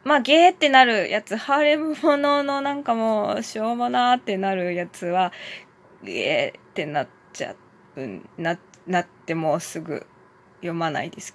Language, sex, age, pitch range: Japanese, female, 20-39, 195-290 Hz